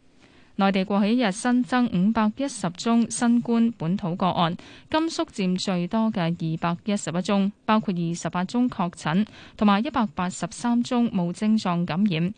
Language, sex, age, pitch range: Chinese, female, 20-39, 175-230 Hz